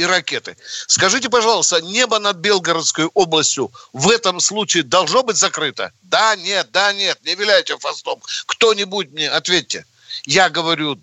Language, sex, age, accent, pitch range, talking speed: Russian, male, 60-79, native, 175-225 Hz, 140 wpm